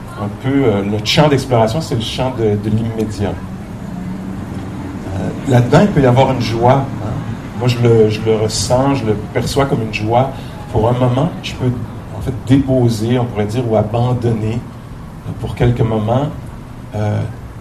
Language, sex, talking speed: English, male, 175 wpm